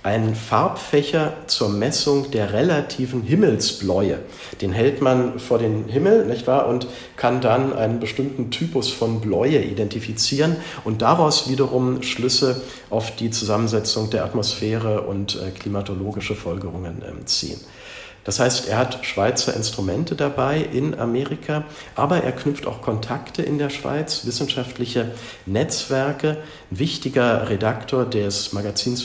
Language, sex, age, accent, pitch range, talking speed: German, male, 50-69, German, 105-130 Hz, 125 wpm